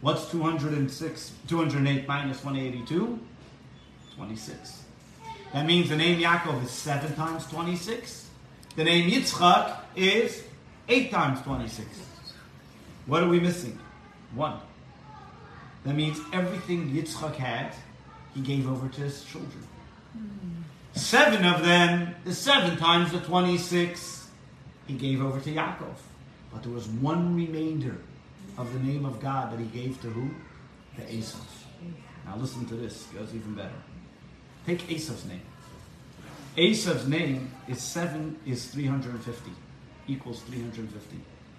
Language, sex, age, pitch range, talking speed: English, male, 40-59, 125-170 Hz, 125 wpm